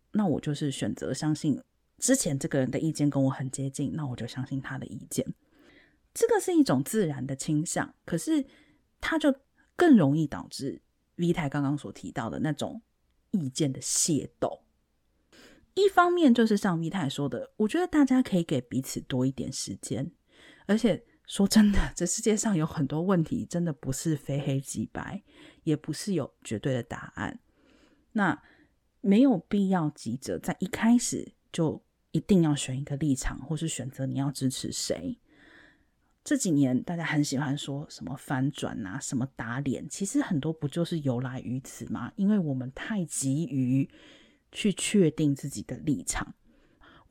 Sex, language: female, Chinese